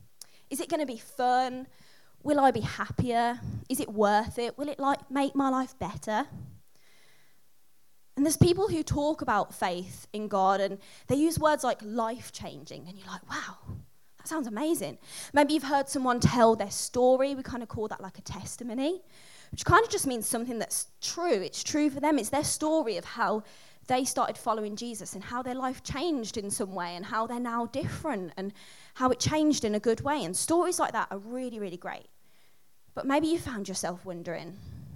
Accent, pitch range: British, 210-290 Hz